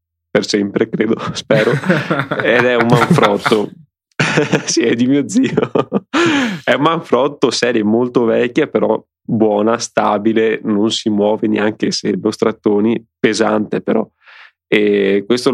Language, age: Italian, 20-39